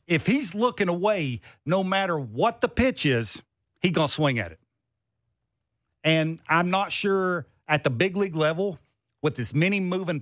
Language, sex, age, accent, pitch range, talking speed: English, male, 50-69, American, 135-195 Hz, 170 wpm